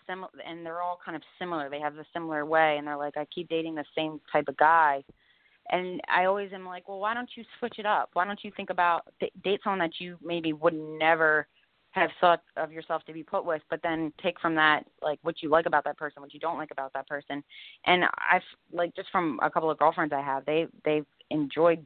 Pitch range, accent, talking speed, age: 145-170 Hz, American, 240 wpm, 20-39